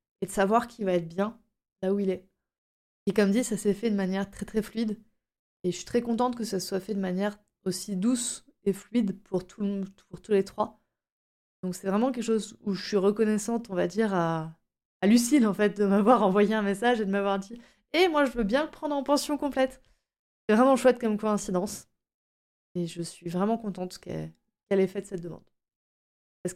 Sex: female